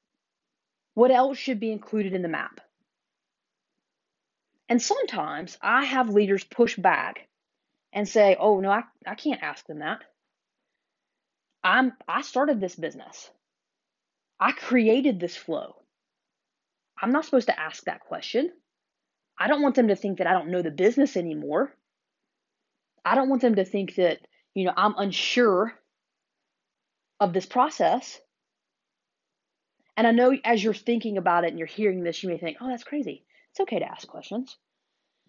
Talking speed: 155 wpm